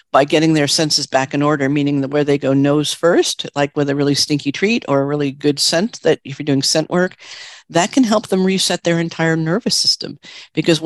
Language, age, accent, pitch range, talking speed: English, 50-69, American, 140-165 Hz, 225 wpm